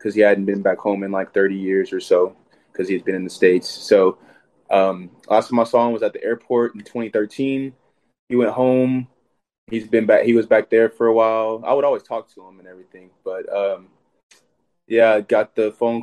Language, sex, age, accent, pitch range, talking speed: English, male, 20-39, American, 95-115 Hz, 210 wpm